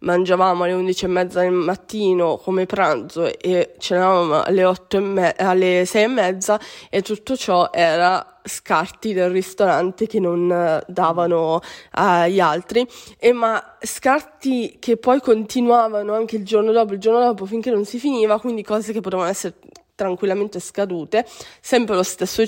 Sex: female